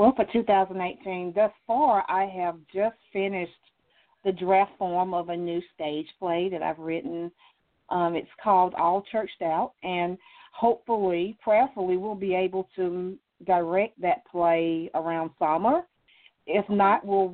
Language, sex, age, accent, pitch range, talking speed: English, female, 50-69, American, 175-210 Hz, 140 wpm